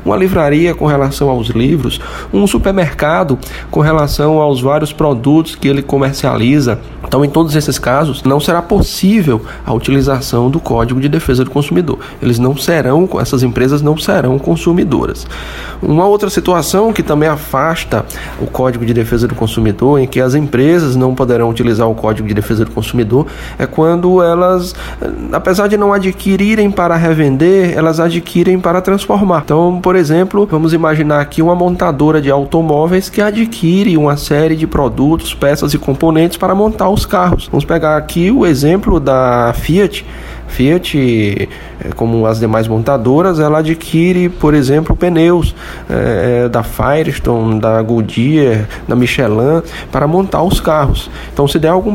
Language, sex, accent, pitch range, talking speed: Portuguese, male, Brazilian, 130-170 Hz, 150 wpm